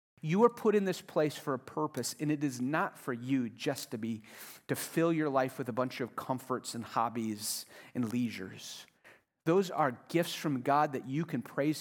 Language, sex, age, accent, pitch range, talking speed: English, male, 40-59, American, 130-180 Hz, 205 wpm